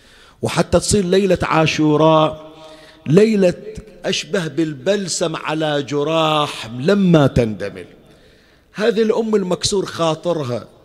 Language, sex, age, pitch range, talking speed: Arabic, male, 50-69, 145-185 Hz, 85 wpm